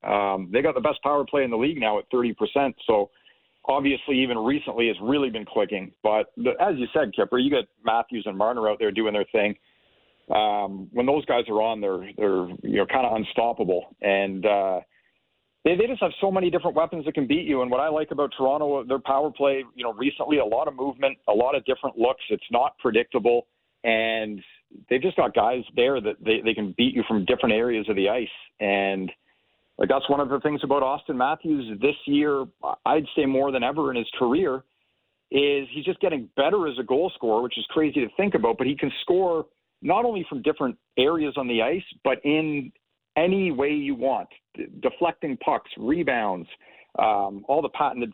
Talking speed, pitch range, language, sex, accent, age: 205 wpm, 115-150 Hz, English, male, American, 40-59